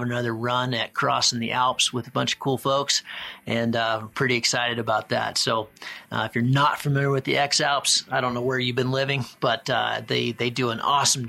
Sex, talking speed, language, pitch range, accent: male, 230 wpm, English, 115-135 Hz, American